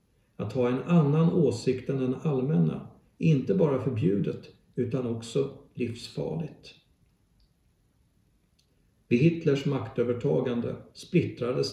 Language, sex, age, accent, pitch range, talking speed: Swedish, male, 50-69, native, 120-155 Hz, 90 wpm